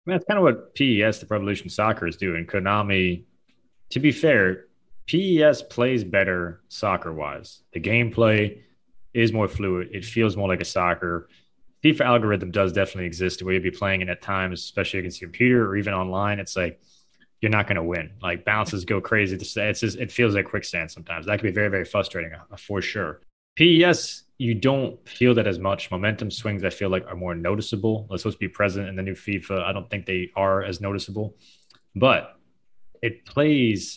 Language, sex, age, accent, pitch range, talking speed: English, male, 20-39, American, 90-110 Hz, 200 wpm